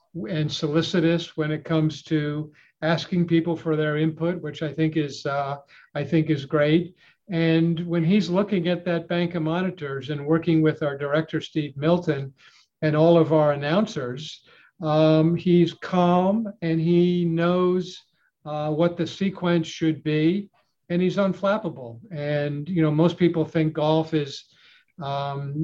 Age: 50-69